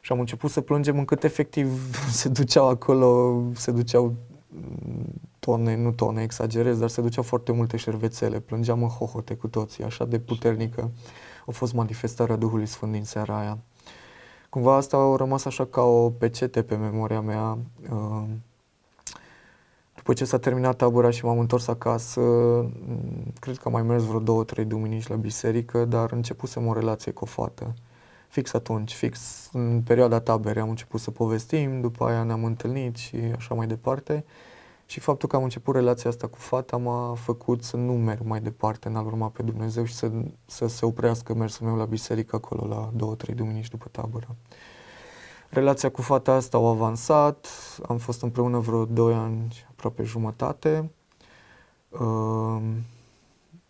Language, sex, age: Romanian, male, 20-39